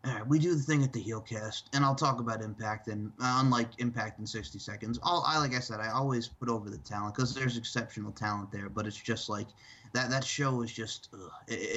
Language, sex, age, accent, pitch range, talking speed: English, male, 30-49, American, 110-140 Hz, 240 wpm